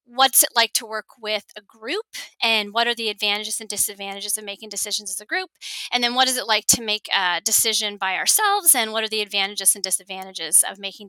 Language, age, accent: English, 30-49, American